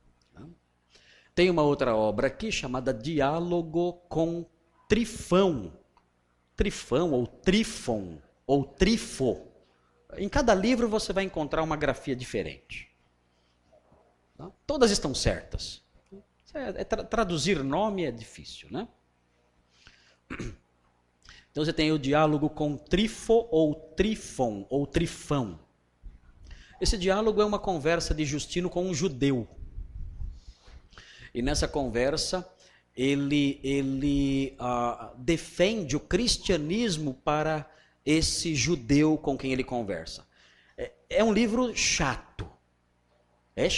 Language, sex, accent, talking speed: Portuguese, male, Brazilian, 100 wpm